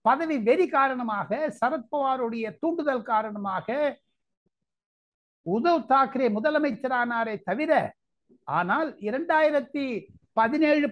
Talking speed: 70 wpm